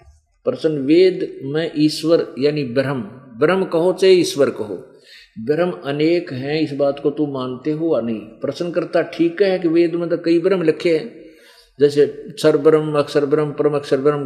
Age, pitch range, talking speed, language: 50-69, 140-190 Hz, 175 wpm, Hindi